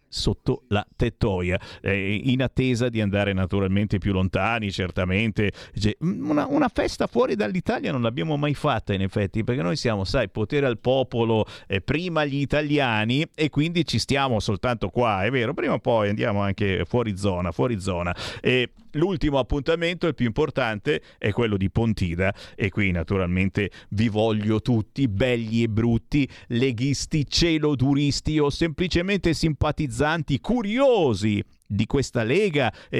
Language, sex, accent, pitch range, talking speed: Italian, male, native, 105-150 Hz, 145 wpm